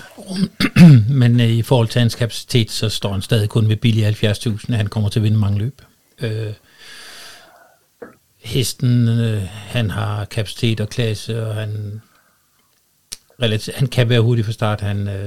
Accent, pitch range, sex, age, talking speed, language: native, 110-130 Hz, male, 60-79, 150 wpm, Danish